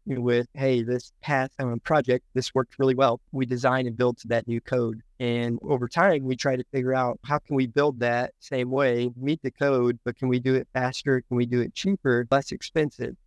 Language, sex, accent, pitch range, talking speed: English, male, American, 120-130 Hz, 225 wpm